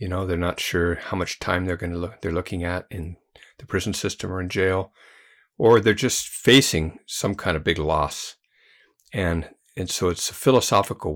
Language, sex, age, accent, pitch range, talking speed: English, male, 50-69, American, 80-95 Hz, 200 wpm